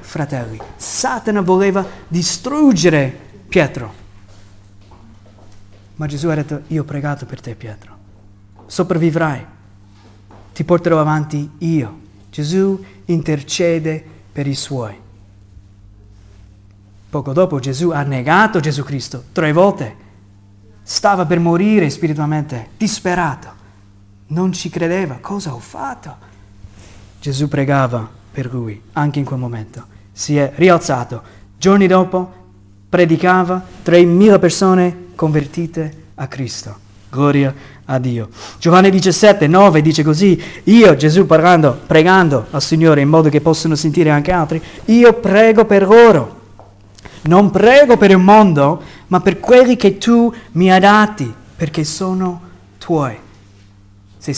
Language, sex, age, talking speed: Italian, male, 30-49, 115 wpm